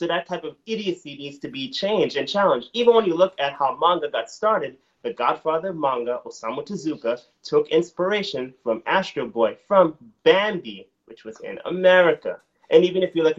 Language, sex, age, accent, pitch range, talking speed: English, male, 30-49, American, 135-195 Hz, 185 wpm